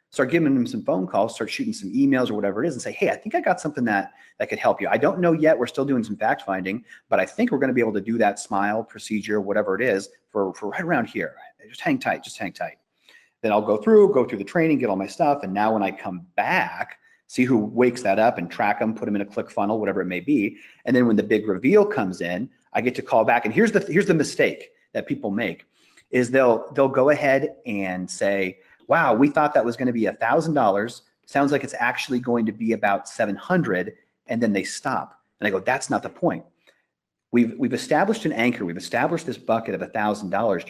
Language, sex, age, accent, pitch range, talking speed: English, male, 30-49, American, 105-155 Hz, 250 wpm